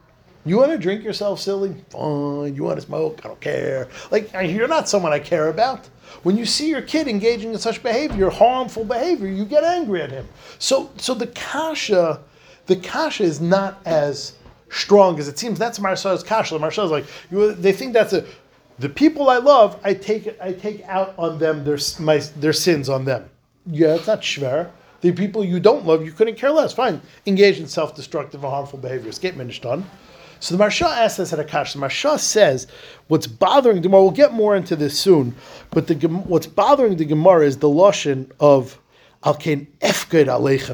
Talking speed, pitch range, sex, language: 195 wpm, 140-205 Hz, male, English